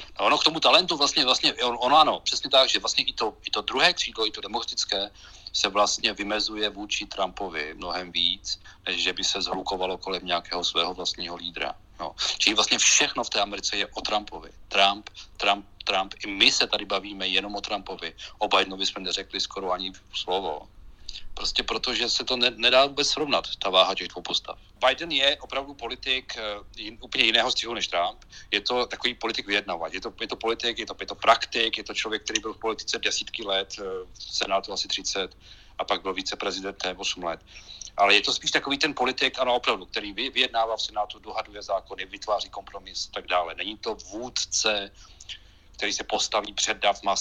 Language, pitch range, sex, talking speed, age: Czech, 95-110 Hz, male, 190 wpm, 40-59